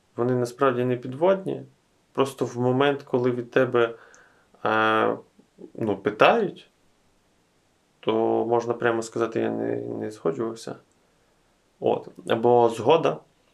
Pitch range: 115-135 Hz